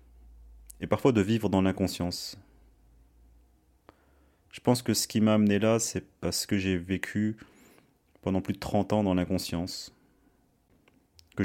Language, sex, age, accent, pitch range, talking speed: French, male, 30-49, French, 85-100 Hz, 140 wpm